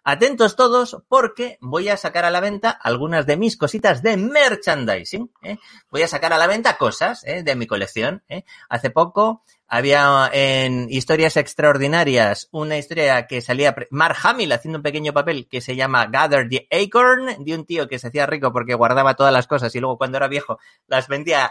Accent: Spanish